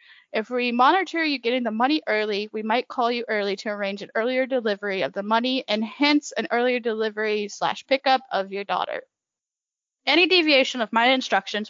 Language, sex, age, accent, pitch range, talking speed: English, female, 10-29, American, 215-280 Hz, 185 wpm